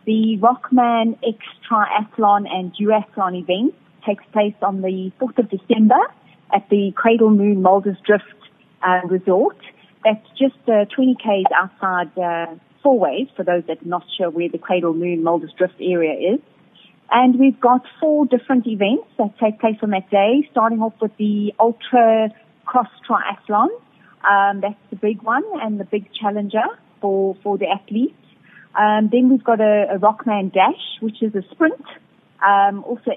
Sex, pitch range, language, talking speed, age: female, 190-230 Hz, English, 165 wpm, 30-49